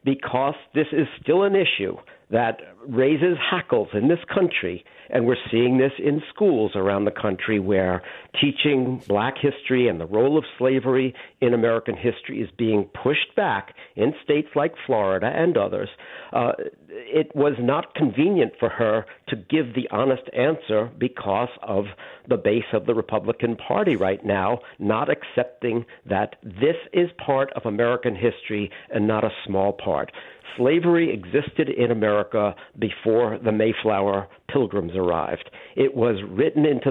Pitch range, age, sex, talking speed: 105-135 Hz, 50-69, male, 150 wpm